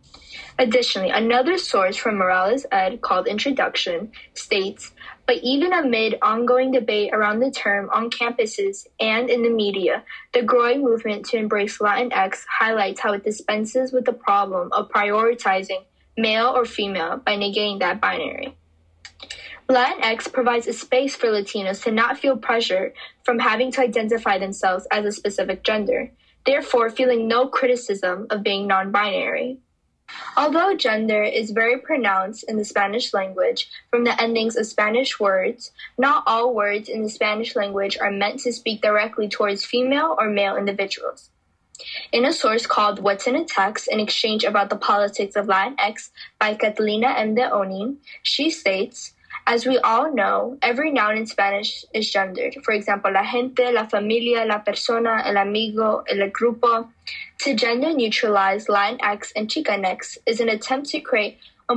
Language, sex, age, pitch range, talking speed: English, female, 10-29, 205-255 Hz, 155 wpm